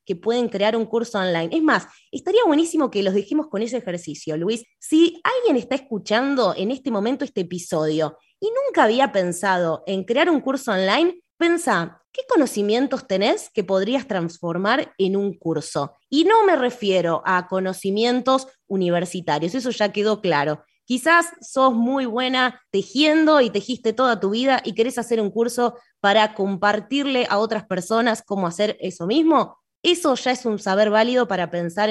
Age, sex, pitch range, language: 20-39, female, 195-265 Hz, Spanish